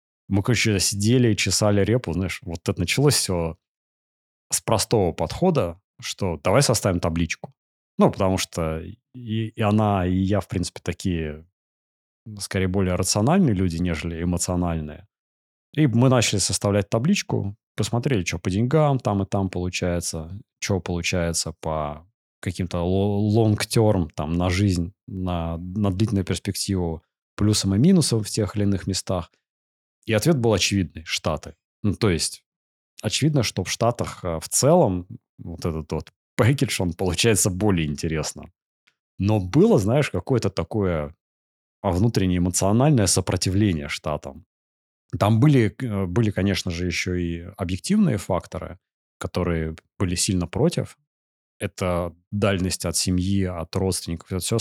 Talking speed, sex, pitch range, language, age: 130 wpm, male, 85-110 Hz, Russian, 20-39